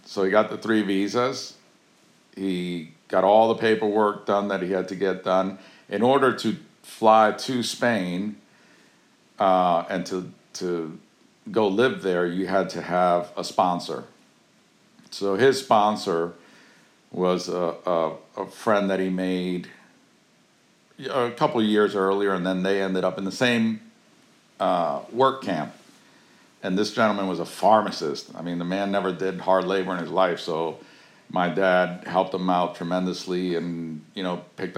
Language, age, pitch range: English, 50-69, 90-100 Hz